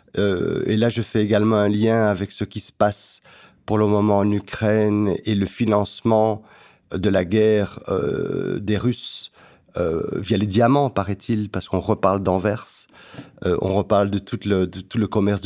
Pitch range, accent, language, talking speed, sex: 100-120 Hz, French, French, 180 wpm, male